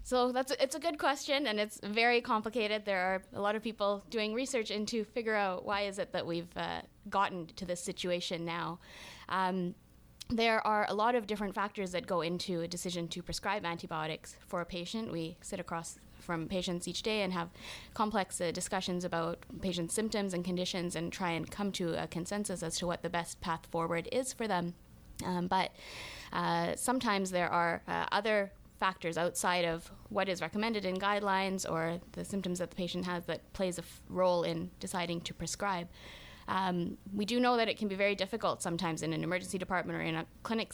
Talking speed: 200 wpm